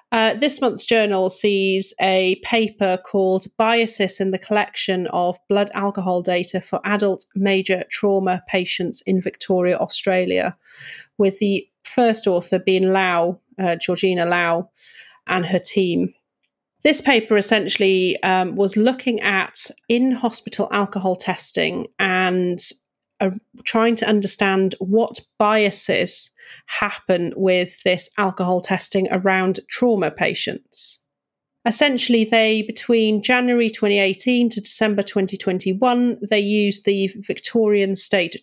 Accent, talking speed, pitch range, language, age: British, 115 wpm, 185-220 Hz, English, 30-49